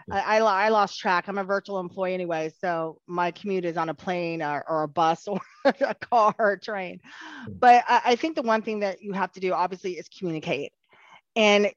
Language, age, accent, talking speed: English, 30-49, American, 215 wpm